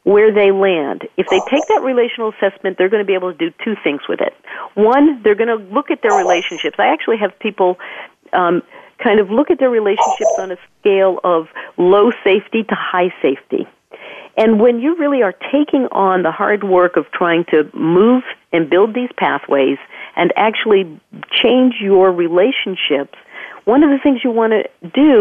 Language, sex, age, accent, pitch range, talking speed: English, female, 50-69, American, 165-230 Hz, 190 wpm